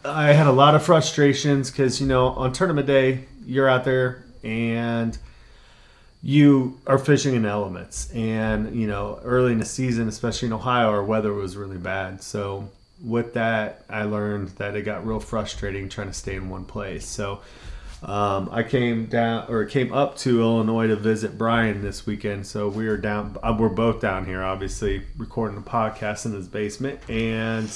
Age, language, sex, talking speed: 30-49, English, male, 175 wpm